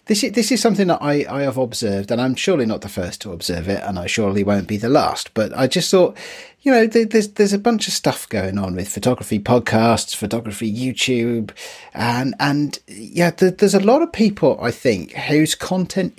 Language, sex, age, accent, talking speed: English, male, 40-59, British, 195 wpm